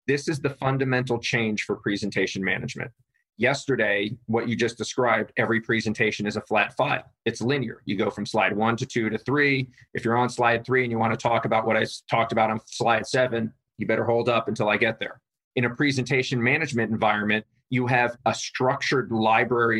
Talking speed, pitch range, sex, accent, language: 200 wpm, 115-130 Hz, male, American, English